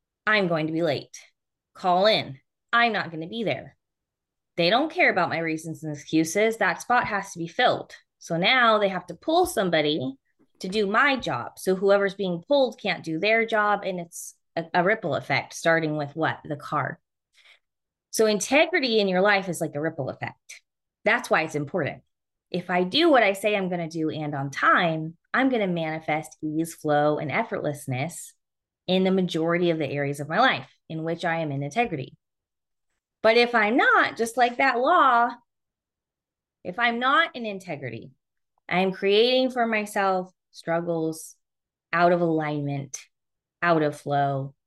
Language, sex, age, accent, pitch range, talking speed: English, female, 20-39, American, 160-215 Hz, 175 wpm